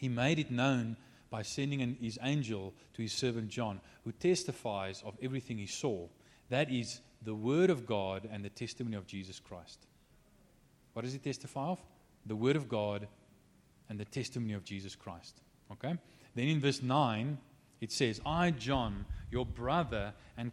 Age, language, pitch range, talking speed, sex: 30-49, English, 95-130 Hz, 165 wpm, male